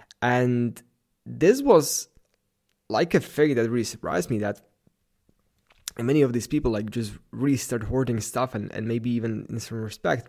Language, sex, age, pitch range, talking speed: English, male, 20-39, 115-130 Hz, 165 wpm